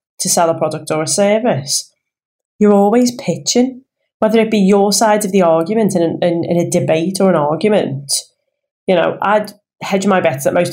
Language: English